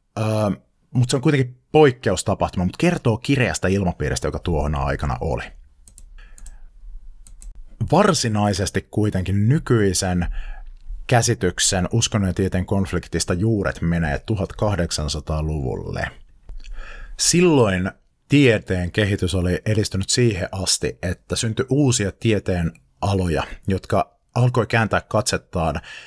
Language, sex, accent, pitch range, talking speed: Finnish, male, native, 90-115 Hz, 95 wpm